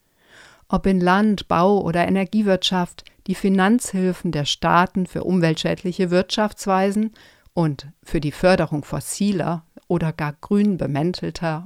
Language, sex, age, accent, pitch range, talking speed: German, female, 50-69, German, 160-195 Hz, 115 wpm